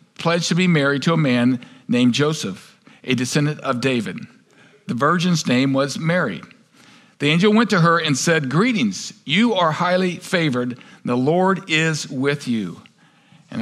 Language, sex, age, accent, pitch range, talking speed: English, male, 50-69, American, 140-185 Hz, 160 wpm